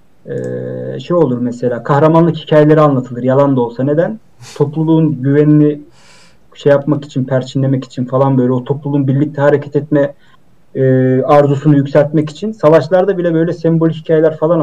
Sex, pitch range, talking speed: male, 140-185 Hz, 135 wpm